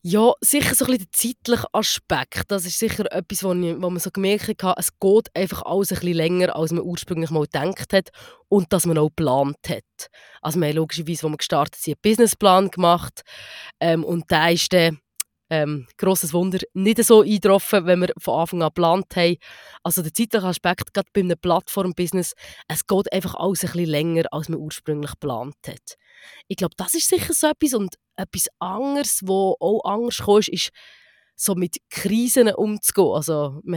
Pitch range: 170-210 Hz